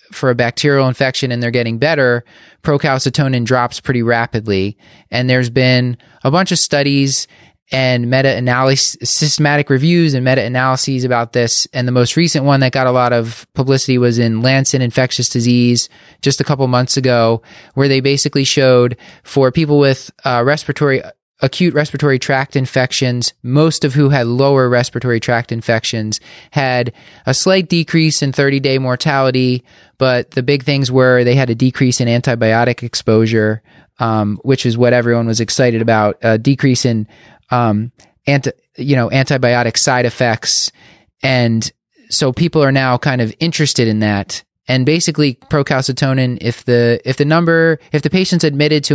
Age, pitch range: 20-39, 120-140 Hz